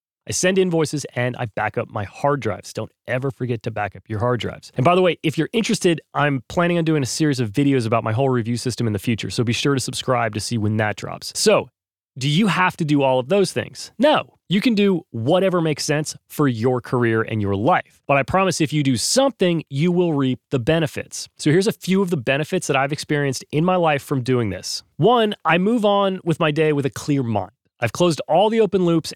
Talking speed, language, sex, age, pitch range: 245 wpm, English, male, 30-49, 120-160 Hz